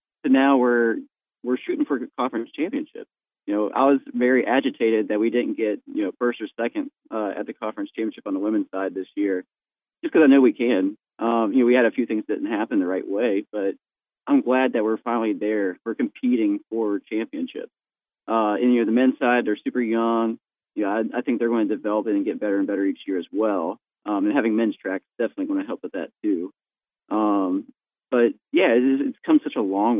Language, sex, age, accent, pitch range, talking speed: English, male, 30-49, American, 105-140 Hz, 230 wpm